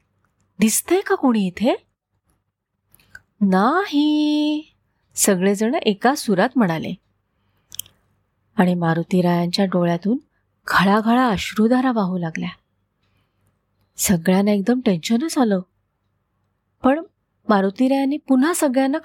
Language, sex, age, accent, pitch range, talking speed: Marathi, female, 30-49, native, 175-255 Hz, 80 wpm